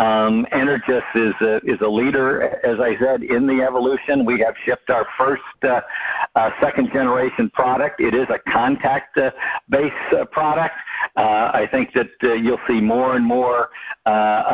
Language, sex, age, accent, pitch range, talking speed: English, male, 60-79, American, 120-155 Hz, 155 wpm